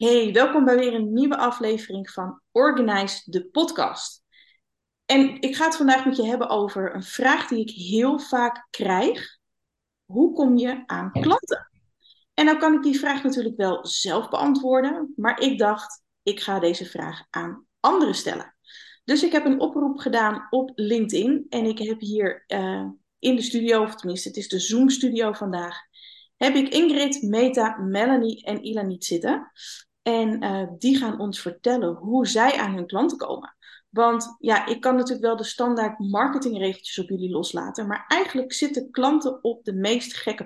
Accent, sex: Dutch, female